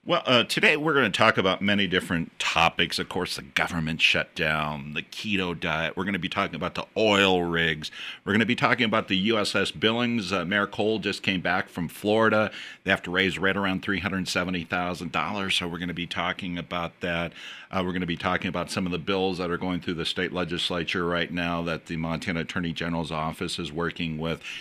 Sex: male